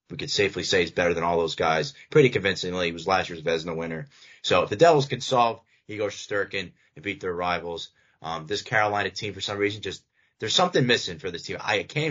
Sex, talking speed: male, 240 wpm